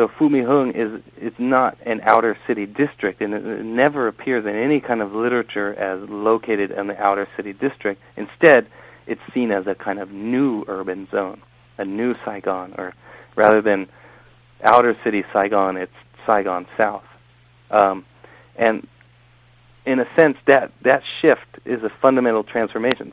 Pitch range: 100-120 Hz